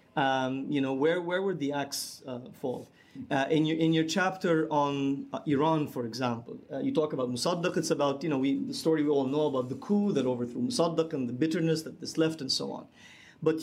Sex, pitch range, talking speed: male, 135-175 Hz, 230 wpm